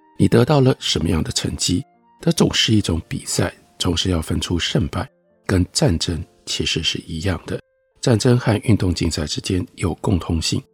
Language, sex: Chinese, male